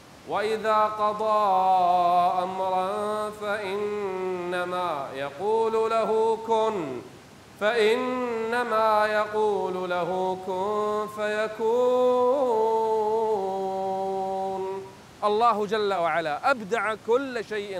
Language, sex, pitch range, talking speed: Arabic, male, 190-235 Hz, 60 wpm